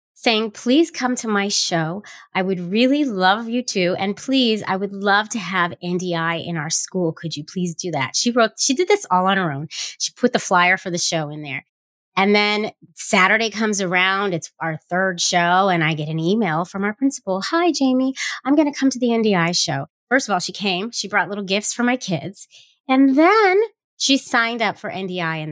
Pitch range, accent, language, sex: 175-245 Hz, American, English, female